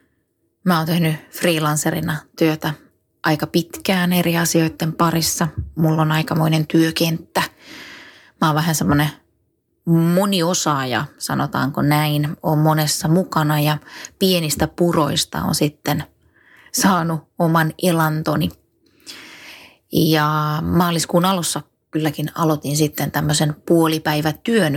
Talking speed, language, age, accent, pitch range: 95 wpm, Finnish, 20-39, native, 155-175 Hz